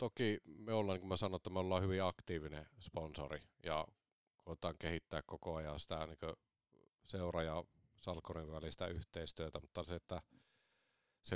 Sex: male